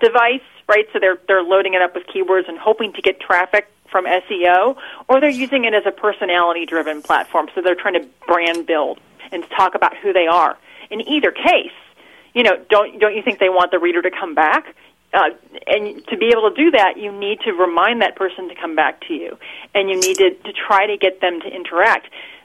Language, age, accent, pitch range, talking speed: English, 40-59, American, 180-240 Hz, 220 wpm